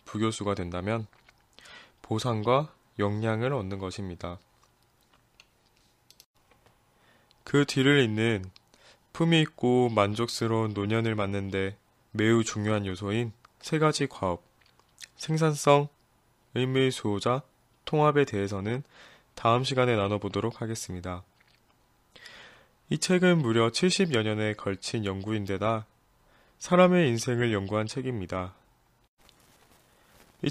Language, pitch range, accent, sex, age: Korean, 100-125 Hz, native, male, 20-39